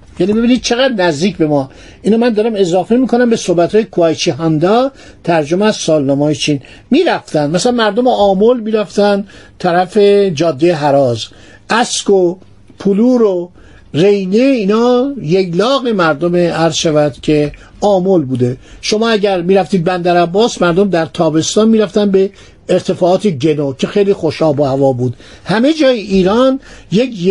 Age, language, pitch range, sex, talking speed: 60-79, Persian, 165-225 Hz, male, 140 wpm